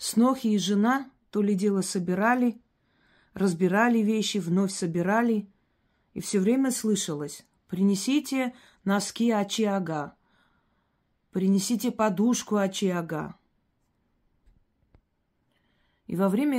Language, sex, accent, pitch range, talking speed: Russian, female, native, 175-220 Hz, 90 wpm